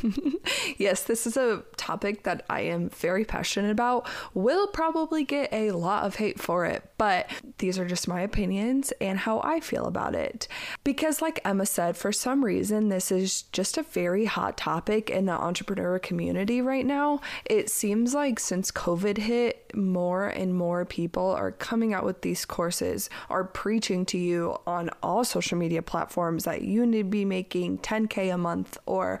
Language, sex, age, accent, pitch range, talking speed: English, female, 20-39, American, 185-250 Hz, 180 wpm